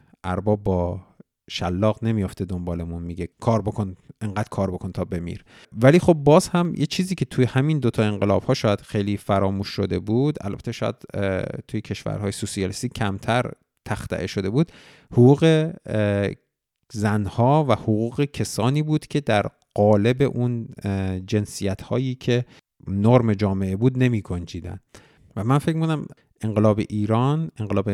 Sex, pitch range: male, 100-130 Hz